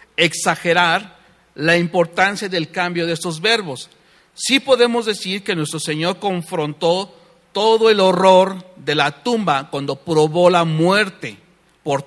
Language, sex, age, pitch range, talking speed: English, male, 50-69, 170-225 Hz, 130 wpm